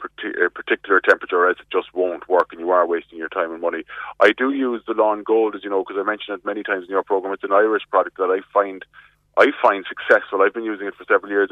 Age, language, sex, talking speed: 20-39, English, male, 260 wpm